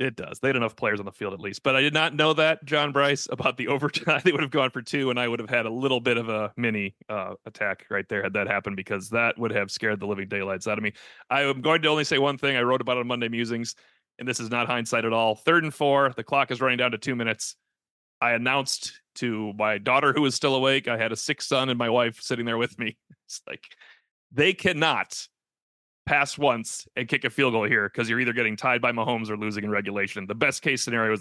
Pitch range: 110-140 Hz